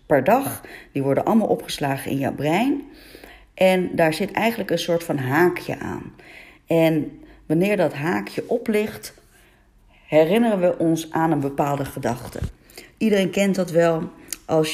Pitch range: 150-210 Hz